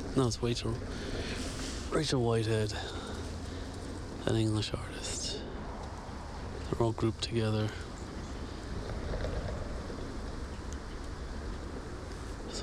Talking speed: 55 wpm